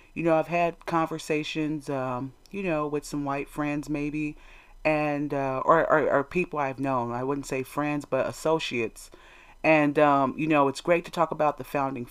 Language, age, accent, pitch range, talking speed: English, 40-59, American, 140-170 Hz, 190 wpm